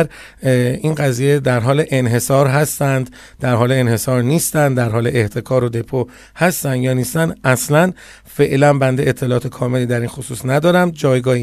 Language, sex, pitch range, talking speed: Persian, male, 125-165 Hz, 145 wpm